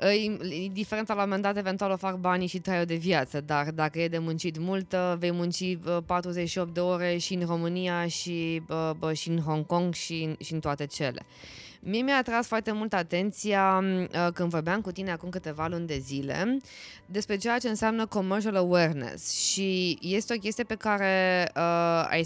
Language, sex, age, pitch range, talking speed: Romanian, female, 20-39, 170-215 Hz, 180 wpm